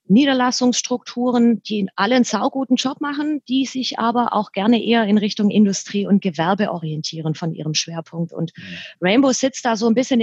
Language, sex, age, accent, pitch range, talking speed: German, female, 30-49, German, 205-250 Hz, 170 wpm